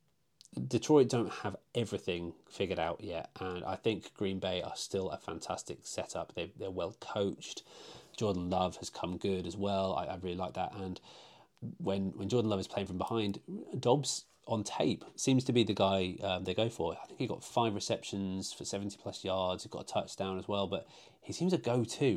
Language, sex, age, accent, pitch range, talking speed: English, male, 30-49, British, 90-115 Hz, 205 wpm